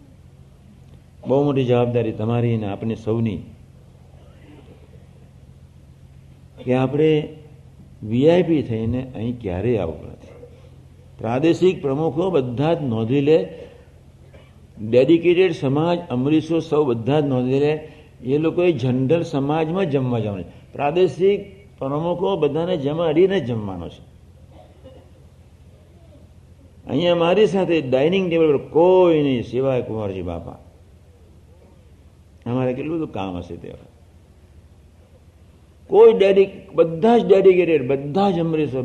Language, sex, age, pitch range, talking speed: Gujarati, male, 60-79, 105-170 Hz, 70 wpm